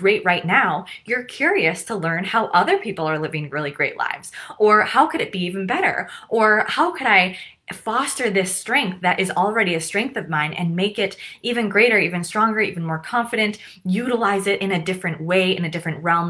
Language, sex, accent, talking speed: English, female, American, 205 wpm